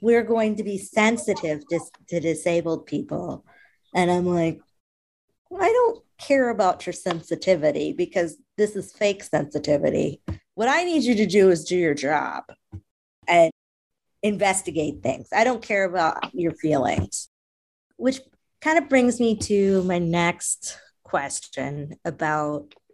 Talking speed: 140 wpm